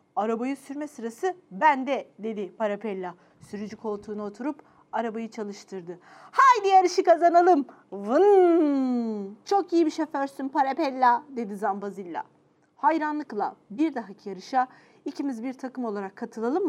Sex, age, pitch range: female, 40-59, 225-360 Hz